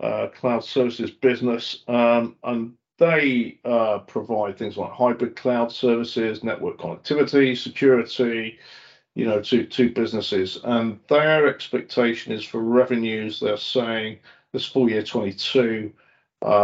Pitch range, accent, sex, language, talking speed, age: 115-135 Hz, British, male, English, 125 wpm, 50-69